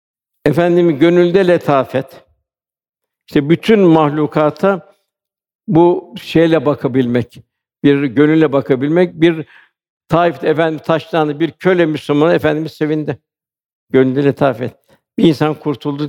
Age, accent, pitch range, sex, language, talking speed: 60-79, native, 140-170 Hz, male, Turkish, 95 wpm